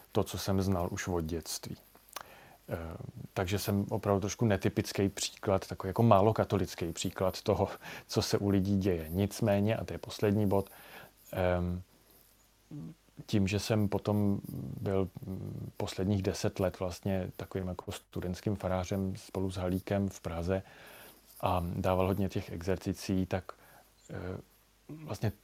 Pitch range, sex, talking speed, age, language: 95-115 Hz, male, 125 wpm, 30-49, Slovak